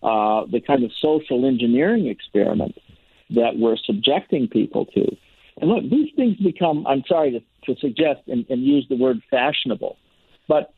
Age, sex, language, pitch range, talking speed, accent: 60-79, male, English, 120-155 Hz, 160 wpm, American